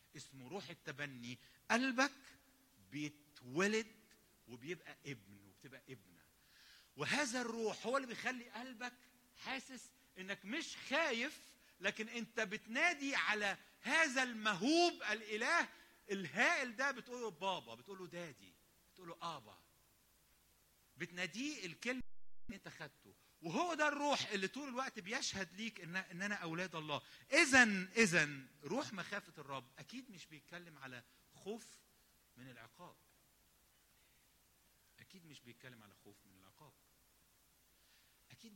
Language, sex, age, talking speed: English, male, 50-69, 110 wpm